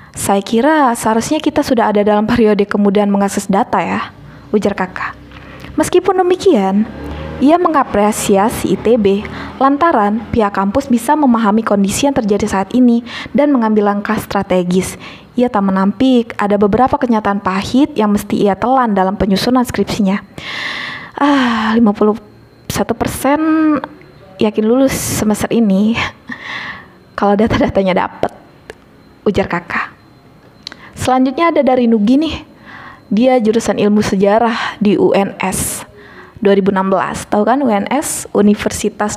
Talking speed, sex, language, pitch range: 115 wpm, female, Indonesian, 205-265 Hz